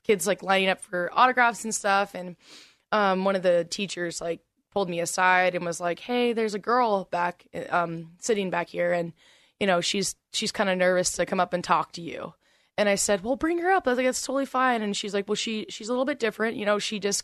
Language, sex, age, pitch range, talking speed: English, female, 20-39, 170-200 Hz, 250 wpm